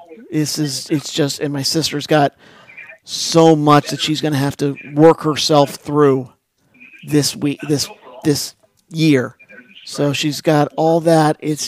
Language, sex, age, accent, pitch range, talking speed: English, male, 50-69, American, 135-150 Hz, 155 wpm